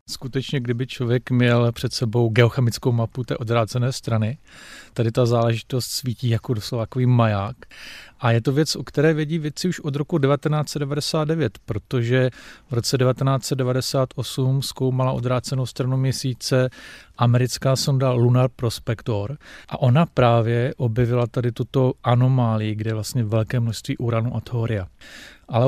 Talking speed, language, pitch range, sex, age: 135 wpm, Czech, 115-135 Hz, male, 40-59